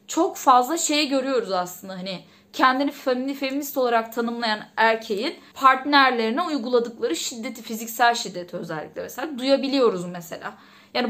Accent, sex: native, female